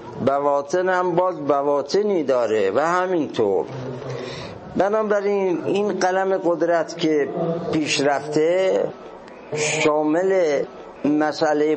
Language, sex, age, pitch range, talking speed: Persian, male, 50-69, 145-175 Hz, 80 wpm